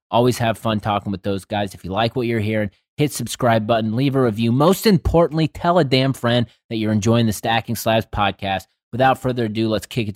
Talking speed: 225 wpm